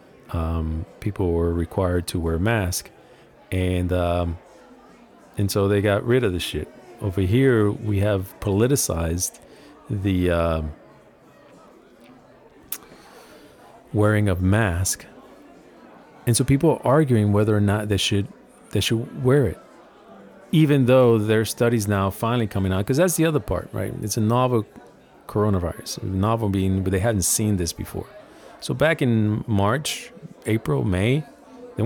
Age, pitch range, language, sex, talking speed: 40-59, 90-120 Hz, English, male, 140 wpm